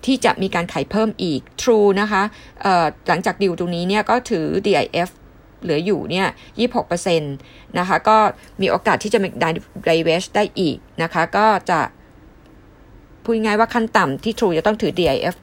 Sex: female